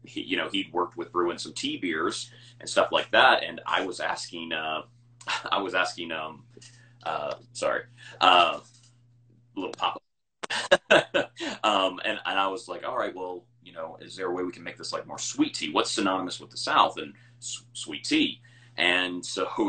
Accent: American